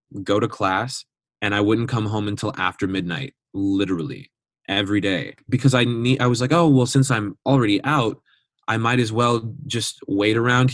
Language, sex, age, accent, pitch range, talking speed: English, male, 20-39, American, 95-125 Hz, 185 wpm